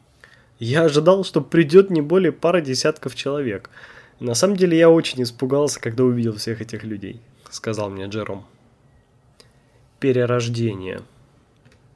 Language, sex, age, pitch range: Russian, male, 20-39, 115-140 Hz